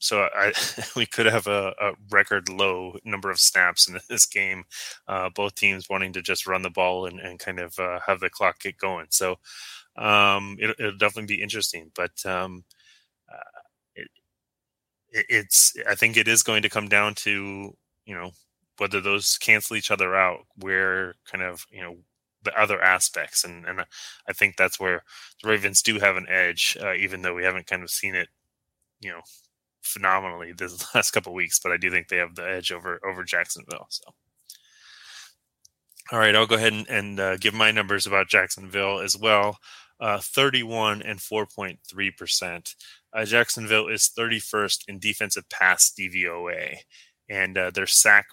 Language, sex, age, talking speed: English, male, 20-39, 175 wpm